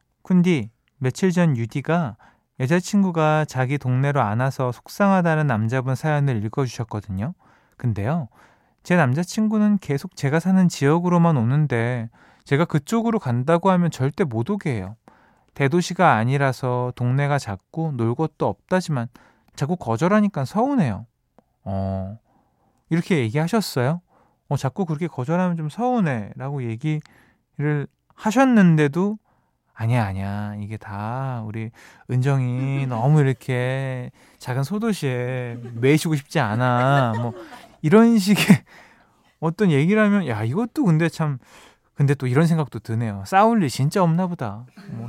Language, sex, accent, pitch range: Korean, male, native, 120-170 Hz